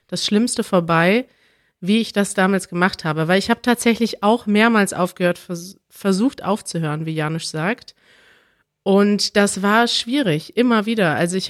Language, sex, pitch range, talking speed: German, female, 185-225 Hz, 150 wpm